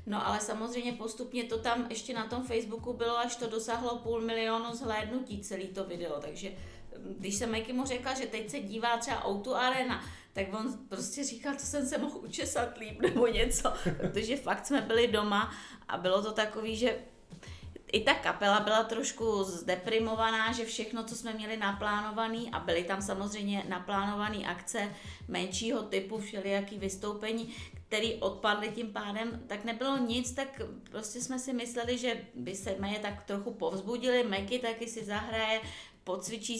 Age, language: 30-49, Czech